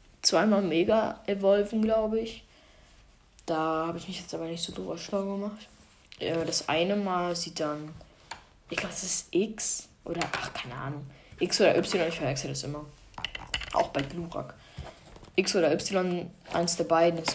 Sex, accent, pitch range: female, German, 160-200 Hz